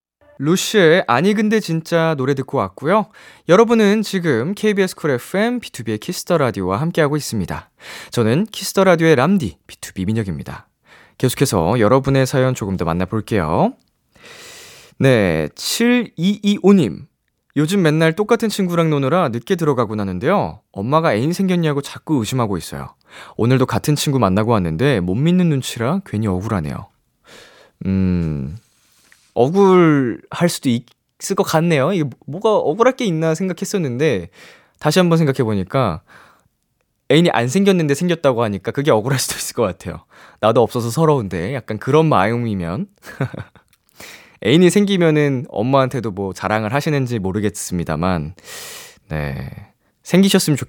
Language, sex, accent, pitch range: Korean, male, native, 110-180 Hz